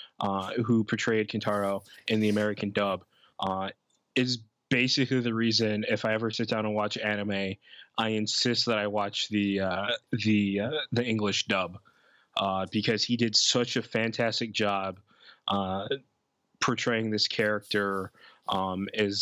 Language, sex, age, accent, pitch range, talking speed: English, male, 20-39, American, 100-120 Hz, 145 wpm